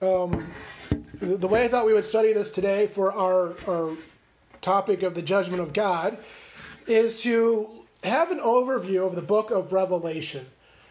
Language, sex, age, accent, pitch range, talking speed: English, male, 30-49, American, 185-225 Hz, 160 wpm